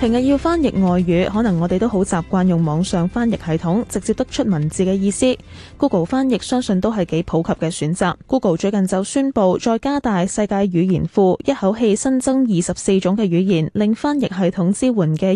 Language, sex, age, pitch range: Chinese, female, 10-29, 175-235 Hz